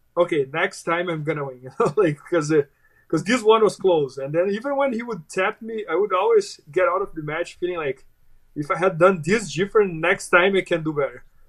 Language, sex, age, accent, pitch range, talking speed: English, male, 20-39, Brazilian, 150-195 Hz, 230 wpm